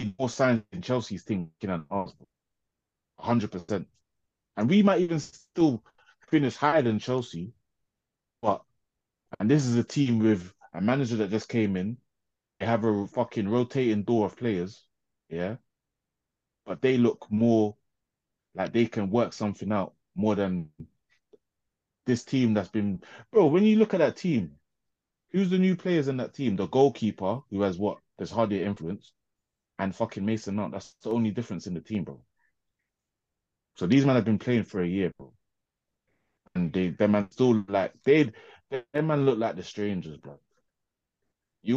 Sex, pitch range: male, 100-125 Hz